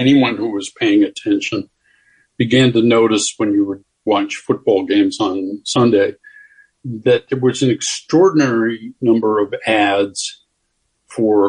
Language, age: English, 50-69